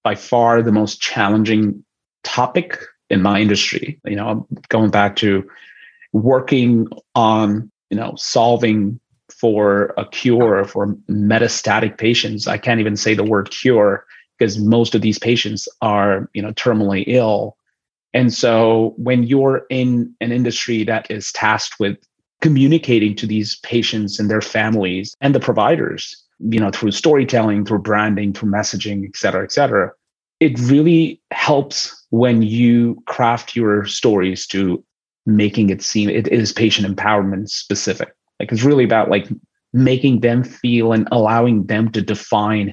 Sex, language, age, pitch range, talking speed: male, English, 30-49, 105-120 Hz, 145 wpm